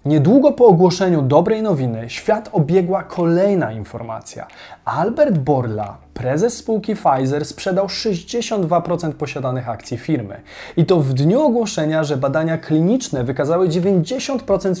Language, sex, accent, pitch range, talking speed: Polish, male, native, 130-185 Hz, 120 wpm